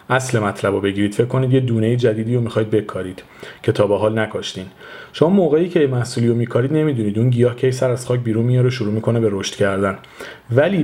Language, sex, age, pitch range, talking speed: Persian, male, 40-59, 115-135 Hz, 210 wpm